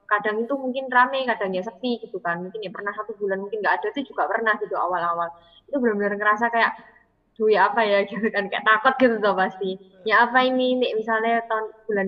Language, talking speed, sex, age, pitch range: Indonesian, 205 wpm, female, 20-39, 205-255 Hz